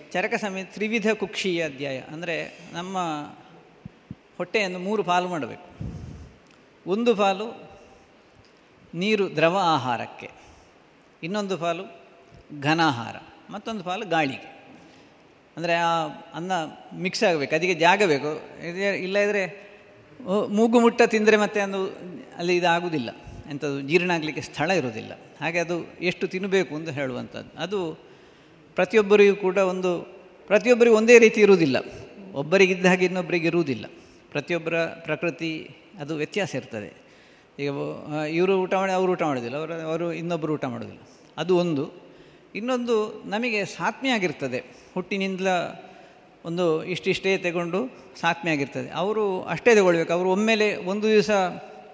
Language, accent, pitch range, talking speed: Kannada, native, 160-200 Hz, 110 wpm